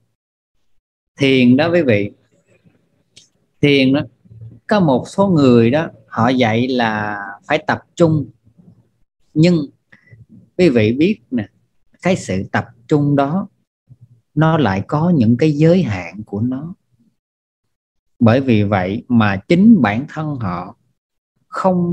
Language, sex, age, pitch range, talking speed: Vietnamese, male, 20-39, 105-150 Hz, 125 wpm